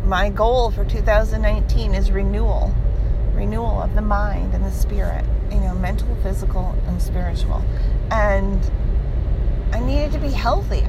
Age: 40-59